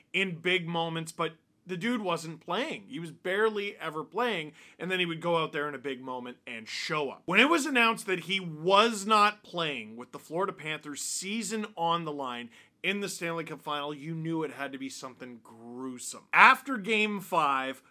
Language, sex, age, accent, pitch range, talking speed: English, male, 30-49, American, 160-220 Hz, 200 wpm